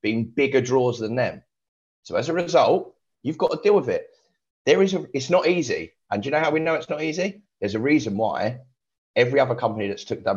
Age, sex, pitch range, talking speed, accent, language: 30-49, male, 110-145 Hz, 220 wpm, British, English